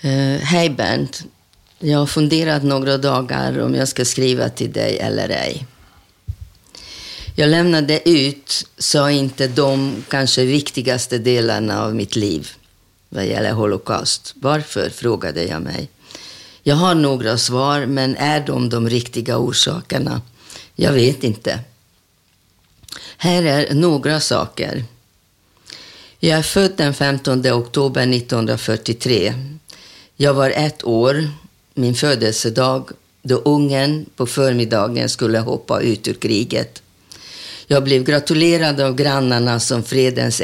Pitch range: 115-145 Hz